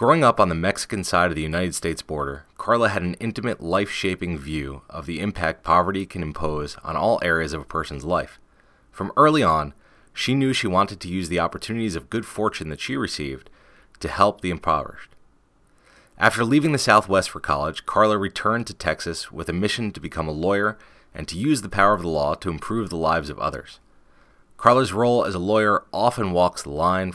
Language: English